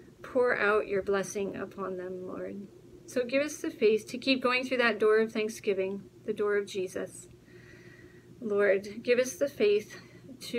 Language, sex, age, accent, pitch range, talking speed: English, female, 40-59, American, 195-235 Hz, 170 wpm